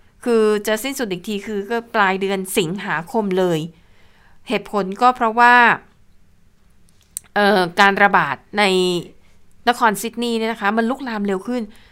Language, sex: Thai, female